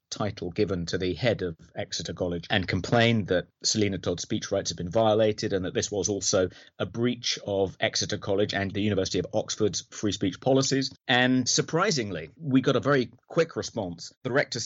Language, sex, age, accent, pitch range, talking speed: English, male, 30-49, British, 95-120 Hz, 190 wpm